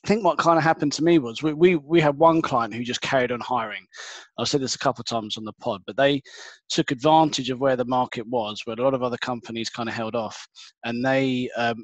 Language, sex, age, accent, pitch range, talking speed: English, male, 20-39, British, 125-150 Hz, 265 wpm